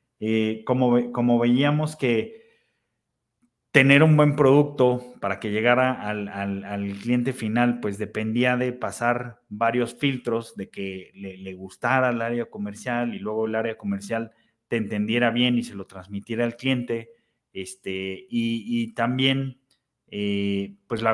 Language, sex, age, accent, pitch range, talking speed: Spanish, male, 30-49, Mexican, 105-125 Hz, 140 wpm